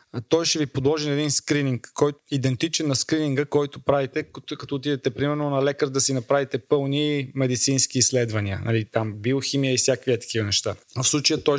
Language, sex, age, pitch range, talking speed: Bulgarian, male, 20-39, 125-145 Hz, 180 wpm